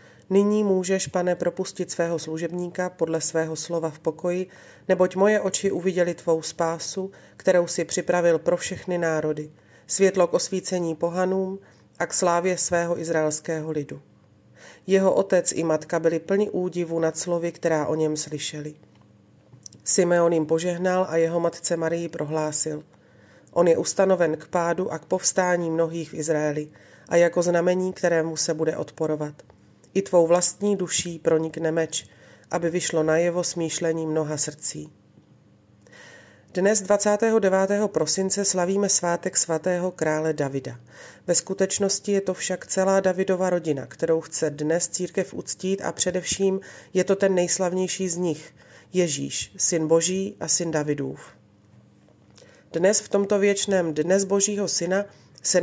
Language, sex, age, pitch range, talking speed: Slovak, female, 30-49, 155-185 Hz, 140 wpm